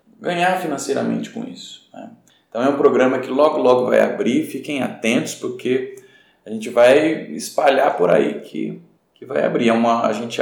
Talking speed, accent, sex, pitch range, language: 165 wpm, Brazilian, male, 160-255 Hz, Portuguese